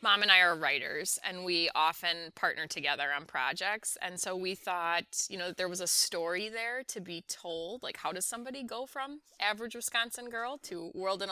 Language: English